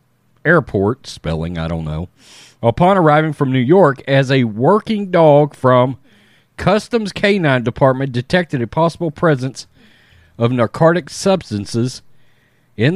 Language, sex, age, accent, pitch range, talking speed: English, male, 40-59, American, 125-165 Hz, 120 wpm